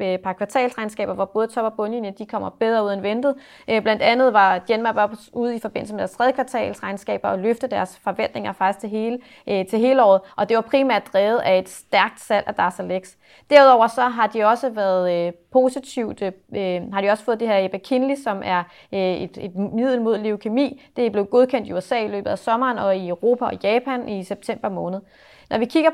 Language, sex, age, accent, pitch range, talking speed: Danish, female, 30-49, native, 205-250 Hz, 210 wpm